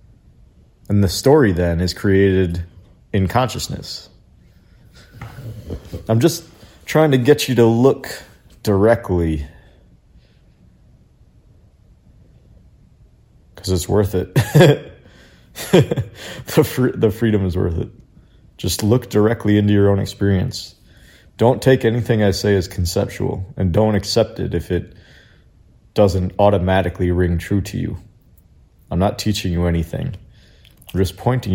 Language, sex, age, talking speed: English, male, 30-49, 115 wpm